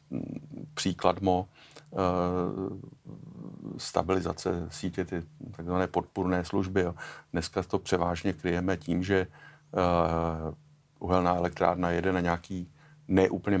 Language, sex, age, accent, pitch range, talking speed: Czech, male, 50-69, native, 85-95 Hz, 85 wpm